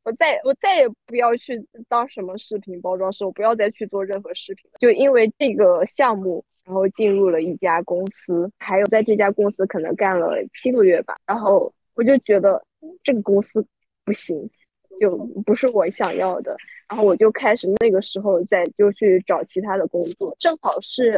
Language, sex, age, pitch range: Chinese, female, 20-39, 190-255 Hz